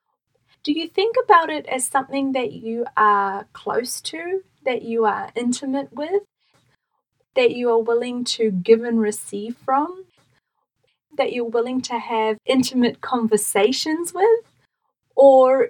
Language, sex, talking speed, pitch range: English, female, 135 wpm, 210-275 Hz